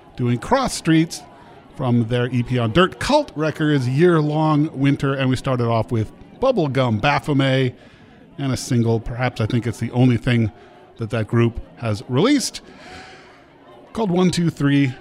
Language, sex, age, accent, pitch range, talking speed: English, male, 40-59, American, 120-160 Hz, 145 wpm